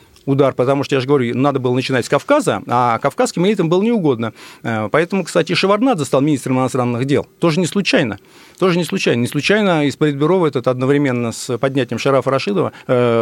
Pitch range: 130-170 Hz